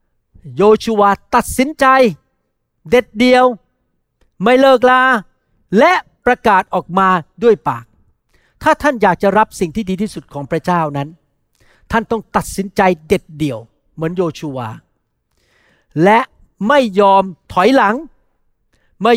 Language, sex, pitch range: Thai, male, 180-250 Hz